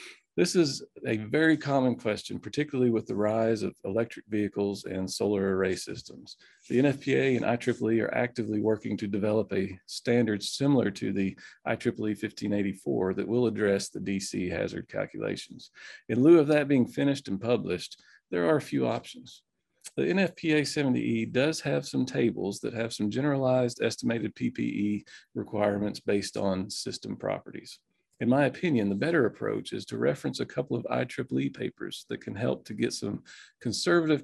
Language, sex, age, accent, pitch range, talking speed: English, male, 40-59, American, 100-130 Hz, 160 wpm